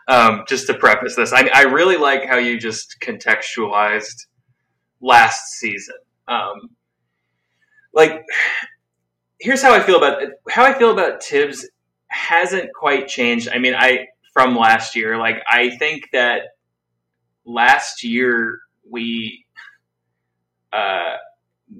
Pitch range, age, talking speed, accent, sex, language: 105-140 Hz, 20-39, 120 wpm, American, male, English